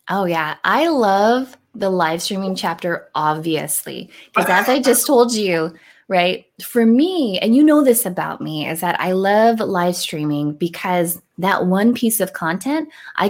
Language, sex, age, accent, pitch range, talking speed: English, female, 20-39, American, 170-240 Hz, 165 wpm